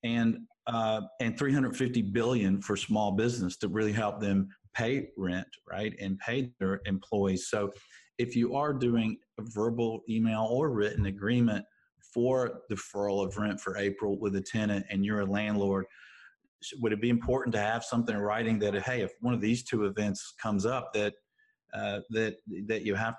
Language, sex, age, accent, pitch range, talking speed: English, male, 40-59, American, 100-115 Hz, 175 wpm